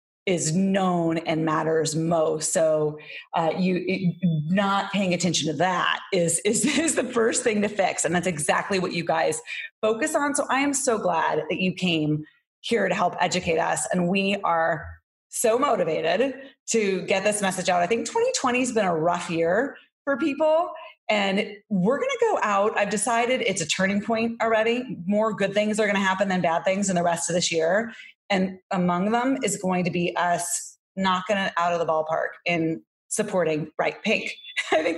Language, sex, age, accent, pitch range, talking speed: English, female, 30-49, American, 170-230 Hz, 190 wpm